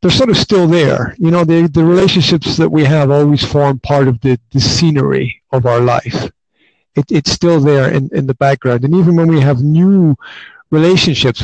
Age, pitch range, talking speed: 50-69, 135-165 Hz, 200 wpm